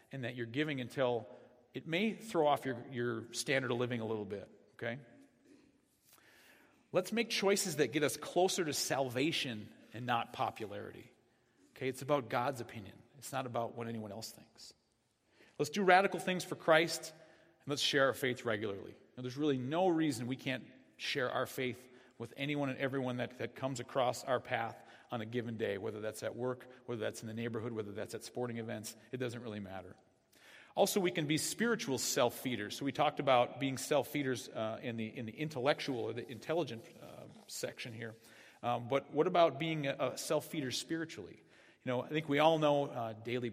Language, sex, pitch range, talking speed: English, male, 120-145 Hz, 190 wpm